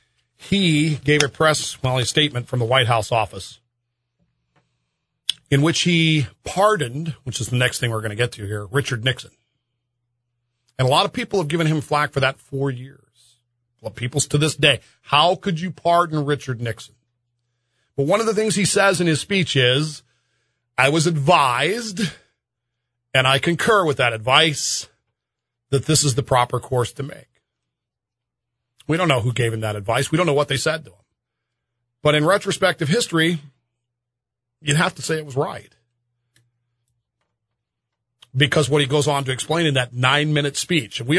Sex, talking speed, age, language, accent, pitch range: male, 175 wpm, 40-59, English, American, 120-155 Hz